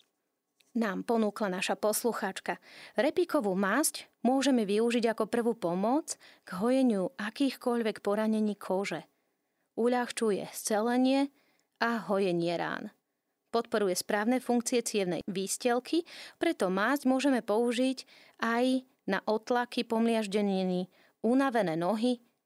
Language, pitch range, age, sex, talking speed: Slovak, 195-255 Hz, 30-49, female, 95 wpm